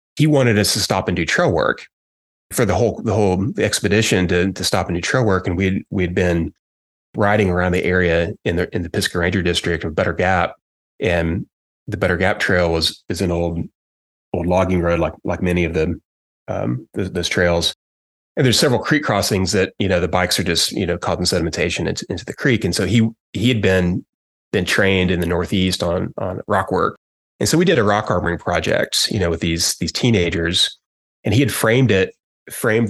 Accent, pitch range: American, 85-100 Hz